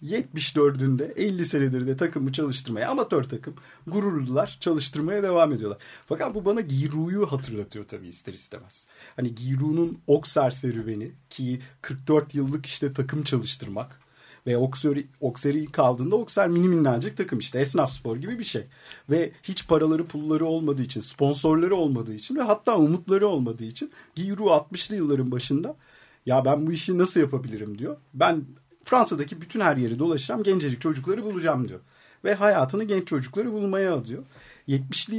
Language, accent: Turkish, native